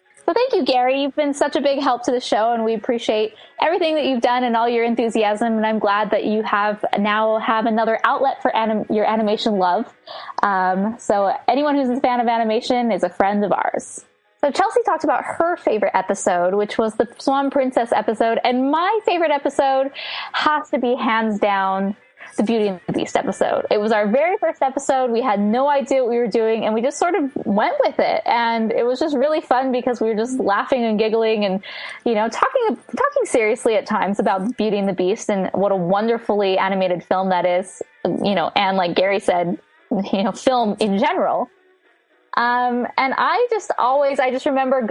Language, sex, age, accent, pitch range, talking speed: English, female, 10-29, American, 205-270 Hz, 205 wpm